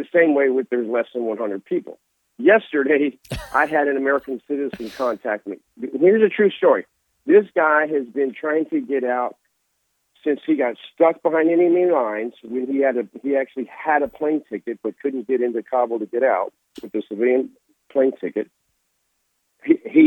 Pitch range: 120-155 Hz